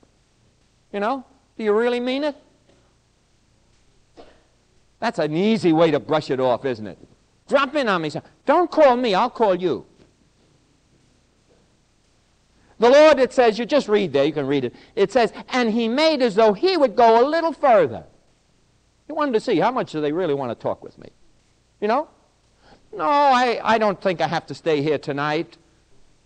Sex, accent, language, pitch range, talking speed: male, American, English, 150-250 Hz, 180 wpm